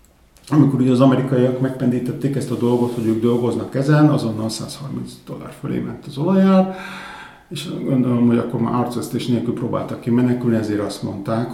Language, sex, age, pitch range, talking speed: Hungarian, male, 50-69, 110-145 Hz, 155 wpm